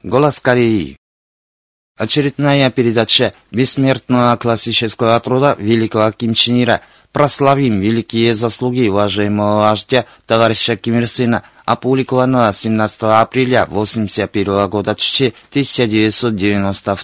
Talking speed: 90 wpm